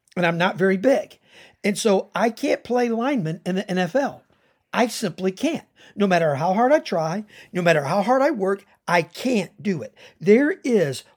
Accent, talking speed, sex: American, 190 wpm, male